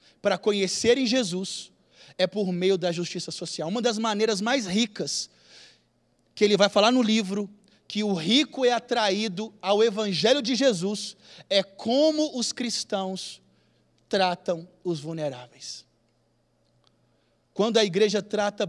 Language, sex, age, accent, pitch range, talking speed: Portuguese, male, 20-39, Brazilian, 180-235 Hz, 130 wpm